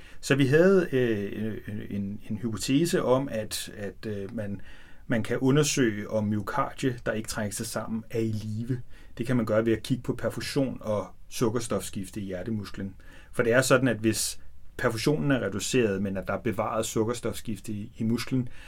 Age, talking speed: 30-49, 180 wpm